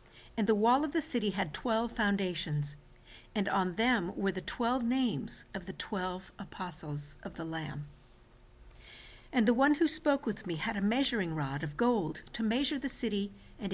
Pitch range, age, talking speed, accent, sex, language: 170-235 Hz, 50-69, 180 wpm, American, female, English